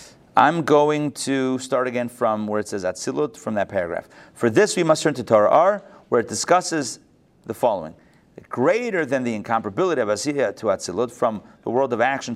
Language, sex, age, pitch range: English, male, 30-49, 115-150 Hz